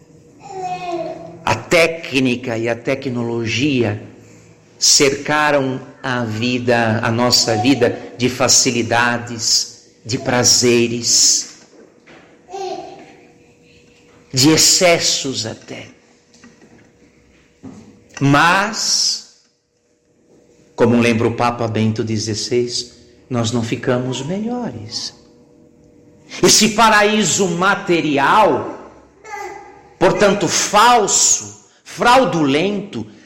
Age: 60-79